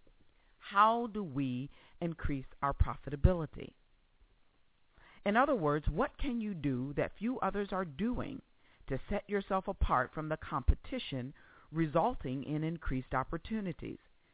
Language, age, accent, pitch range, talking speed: English, 50-69, American, 140-195 Hz, 120 wpm